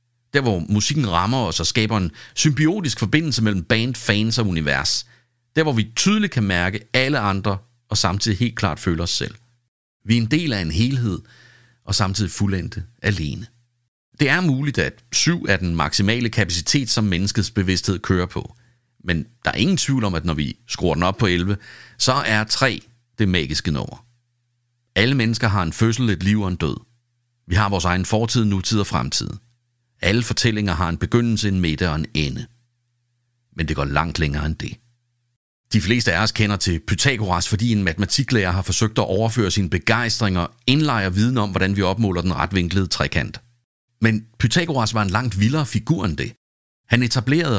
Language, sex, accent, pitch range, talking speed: Danish, male, native, 95-120 Hz, 185 wpm